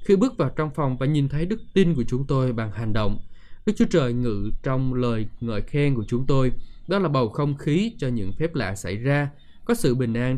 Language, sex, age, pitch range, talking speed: Vietnamese, male, 20-39, 115-145 Hz, 245 wpm